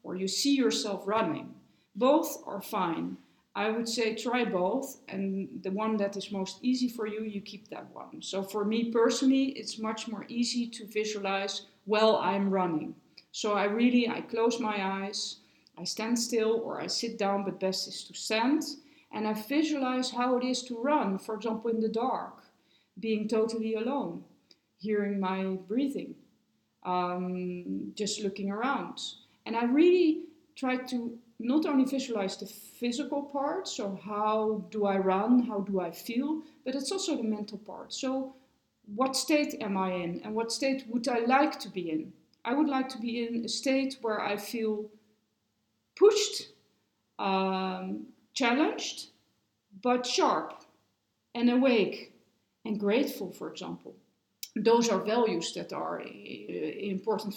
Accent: Dutch